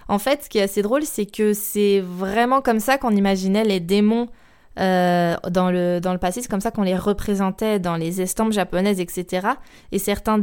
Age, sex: 20-39, female